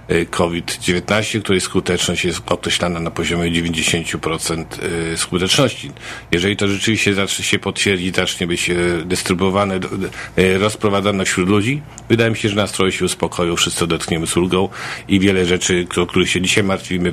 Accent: native